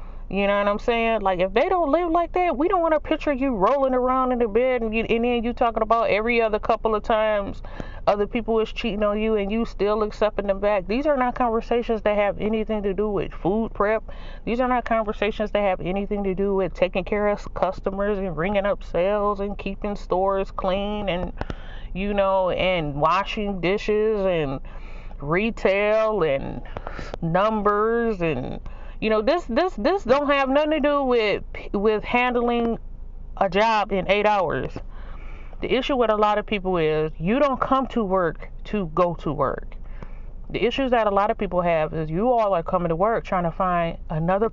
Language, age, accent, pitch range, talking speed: English, 30-49, American, 190-235 Hz, 195 wpm